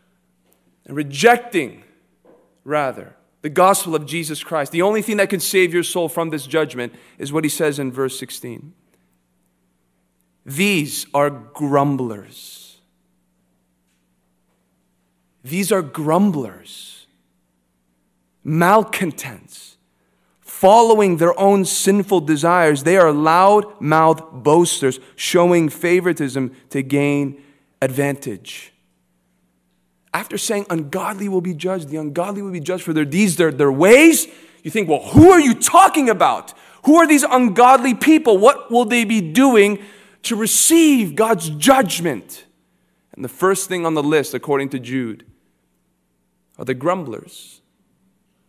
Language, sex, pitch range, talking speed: English, male, 125-190 Hz, 120 wpm